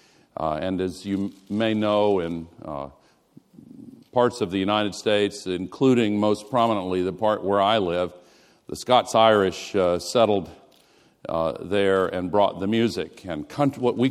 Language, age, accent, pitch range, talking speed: English, 50-69, American, 90-115 Hz, 140 wpm